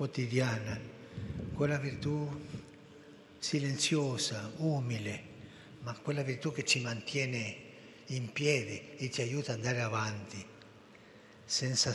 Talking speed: 100 wpm